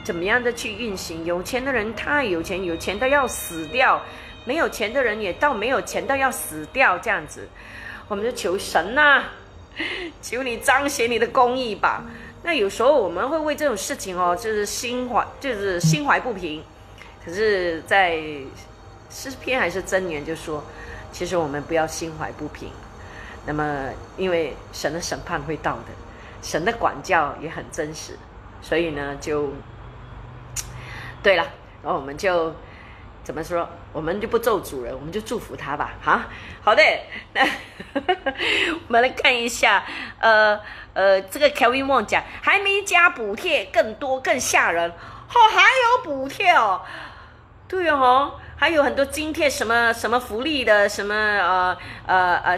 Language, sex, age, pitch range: Chinese, female, 30-49, 165-270 Hz